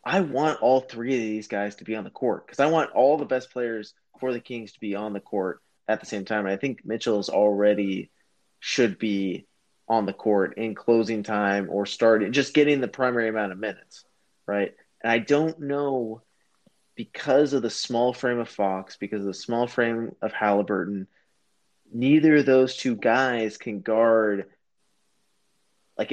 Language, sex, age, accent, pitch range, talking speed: English, male, 20-39, American, 105-130 Hz, 185 wpm